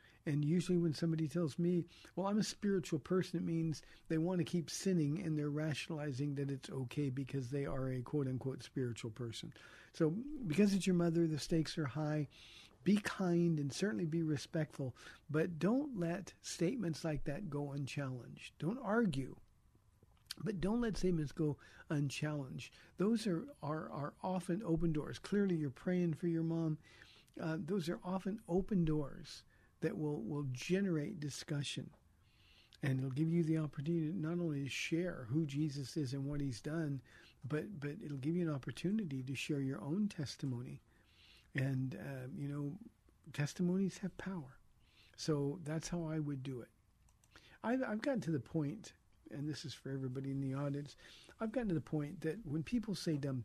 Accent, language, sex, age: American, English, male, 50-69